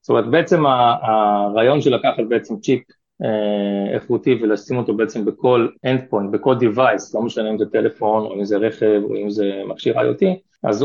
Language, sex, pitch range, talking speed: Hebrew, male, 105-140 Hz, 175 wpm